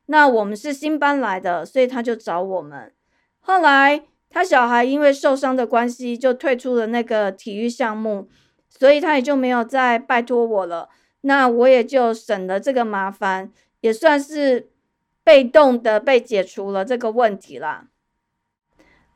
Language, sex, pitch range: Chinese, female, 225-285 Hz